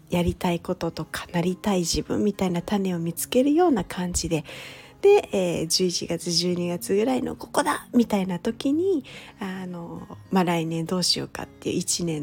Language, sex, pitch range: Japanese, female, 170-230 Hz